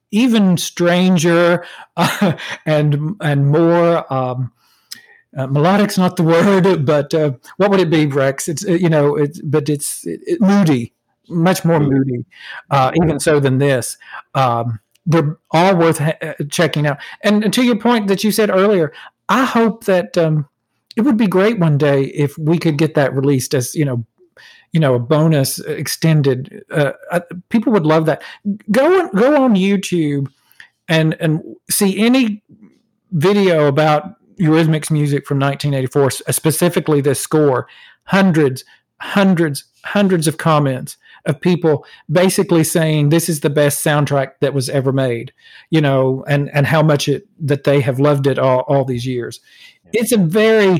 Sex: male